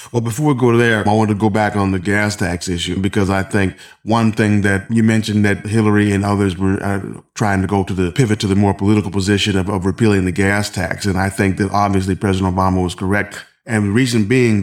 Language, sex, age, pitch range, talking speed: English, male, 30-49, 105-120 Hz, 240 wpm